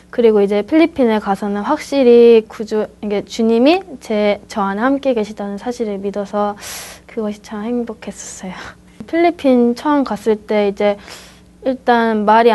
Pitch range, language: 205-240 Hz, Korean